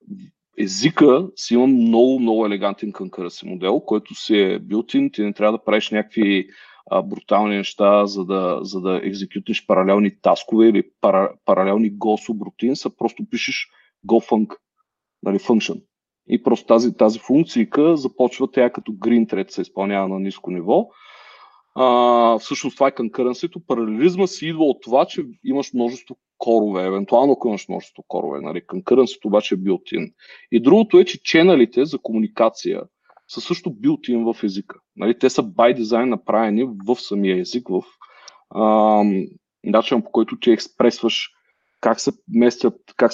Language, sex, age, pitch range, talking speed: Bulgarian, male, 40-59, 105-135 Hz, 145 wpm